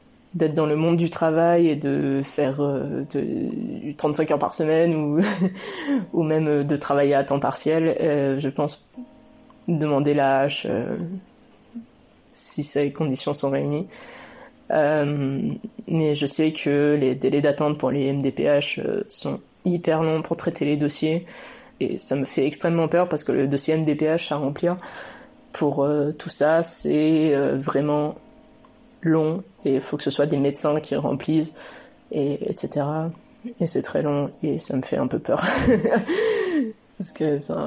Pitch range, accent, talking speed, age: 145-190 Hz, French, 160 wpm, 20-39